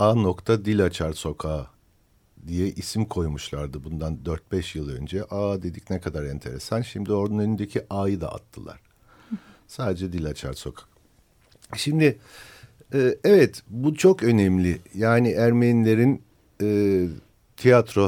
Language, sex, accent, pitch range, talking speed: Turkish, male, native, 90-120 Hz, 110 wpm